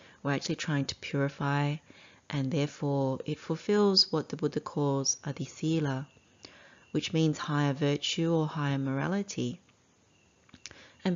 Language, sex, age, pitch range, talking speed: English, female, 30-49, 135-155 Hz, 125 wpm